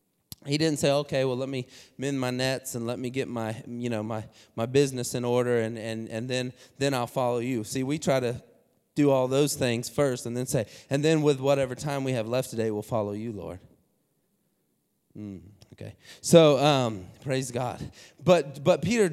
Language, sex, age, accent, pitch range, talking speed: English, male, 20-39, American, 125-160 Hz, 200 wpm